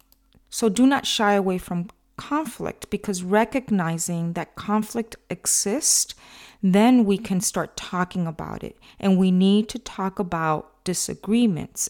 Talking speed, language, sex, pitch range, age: 130 wpm, English, female, 170-220 Hz, 40-59